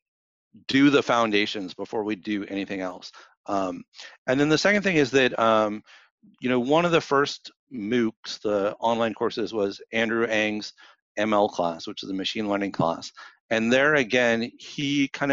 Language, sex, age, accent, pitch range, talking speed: English, male, 40-59, American, 100-120 Hz, 170 wpm